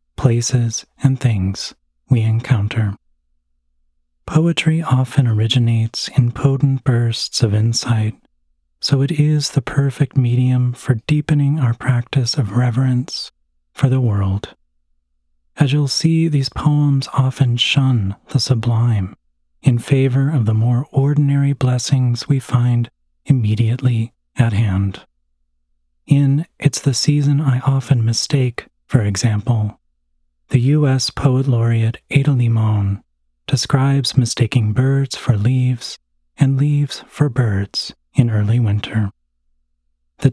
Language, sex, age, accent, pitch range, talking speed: English, male, 40-59, American, 105-135 Hz, 115 wpm